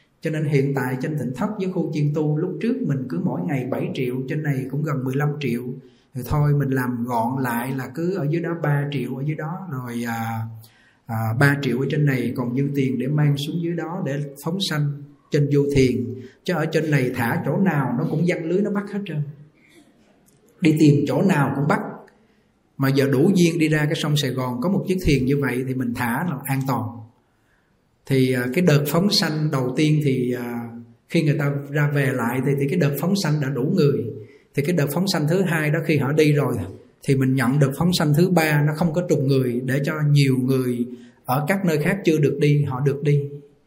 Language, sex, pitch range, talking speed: Vietnamese, male, 130-170 Hz, 230 wpm